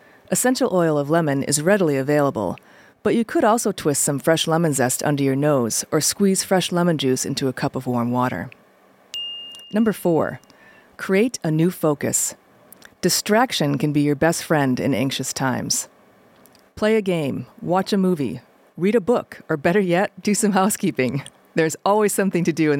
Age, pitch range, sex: 40-59, 140-190 Hz, female